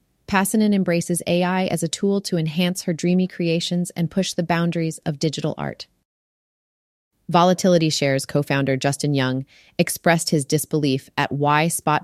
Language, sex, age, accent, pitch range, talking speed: English, female, 30-49, American, 150-180 Hz, 145 wpm